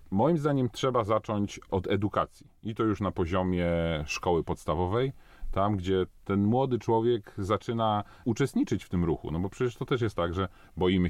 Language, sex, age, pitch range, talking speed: Polish, male, 40-59, 85-110 Hz, 175 wpm